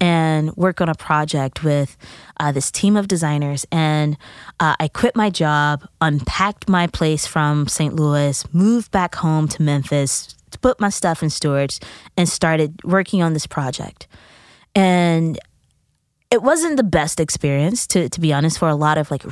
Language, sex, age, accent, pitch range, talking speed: English, female, 20-39, American, 150-185 Hz, 170 wpm